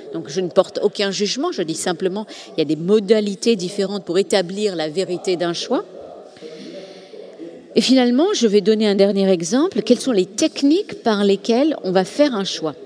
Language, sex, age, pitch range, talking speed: Italian, female, 40-59, 175-245 Hz, 185 wpm